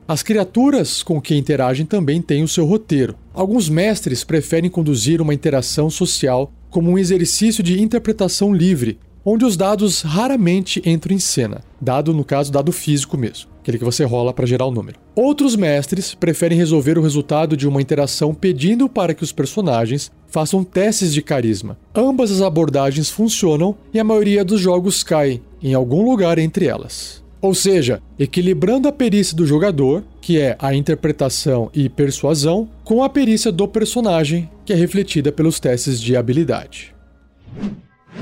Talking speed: 160 wpm